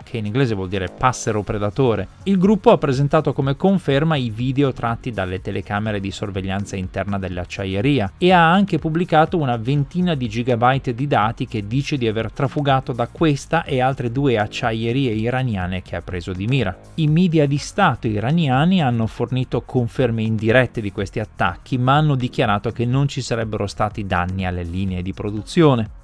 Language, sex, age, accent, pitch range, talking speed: Italian, male, 30-49, native, 105-145 Hz, 170 wpm